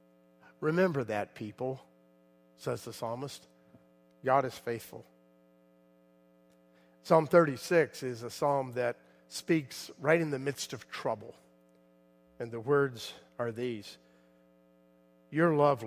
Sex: male